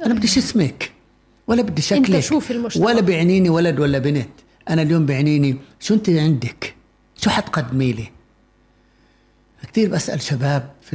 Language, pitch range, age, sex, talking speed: Arabic, 130-165 Hz, 60-79, male, 130 wpm